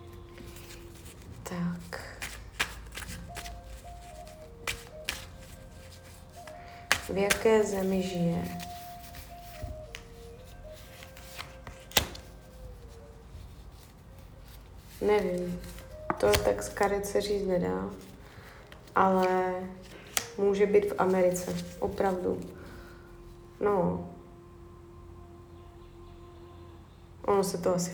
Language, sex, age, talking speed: Czech, female, 20-39, 50 wpm